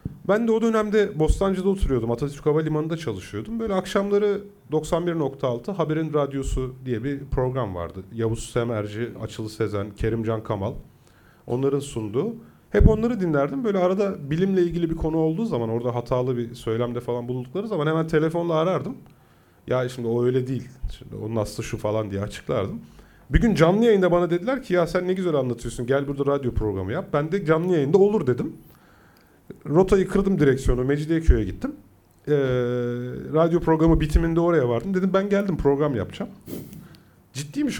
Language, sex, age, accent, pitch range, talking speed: Turkish, male, 40-59, native, 120-170 Hz, 155 wpm